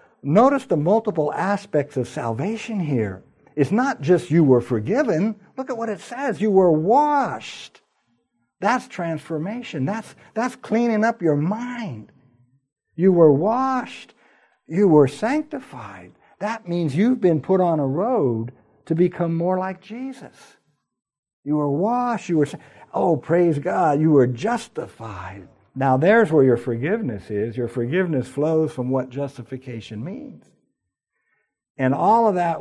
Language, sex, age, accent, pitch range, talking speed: English, male, 60-79, American, 125-205 Hz, 140 wpm